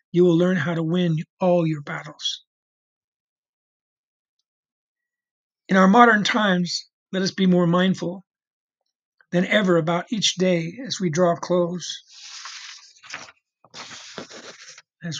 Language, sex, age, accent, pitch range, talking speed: English, male, 50-69, American, 170-205 Hz, 110 wpm